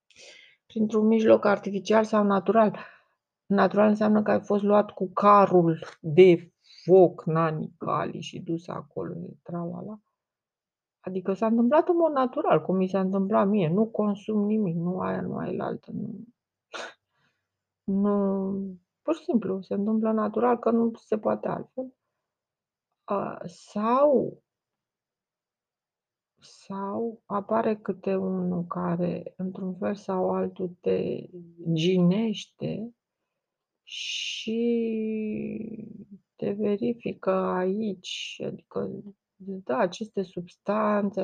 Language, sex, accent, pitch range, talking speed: Romanian, female, native, 180-215 Hz, 110 wpm